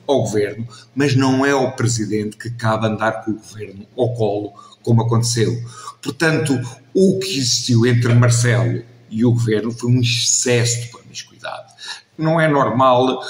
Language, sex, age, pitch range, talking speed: Portuguese, male, 50-69, 115-125 Hz, 155 wpm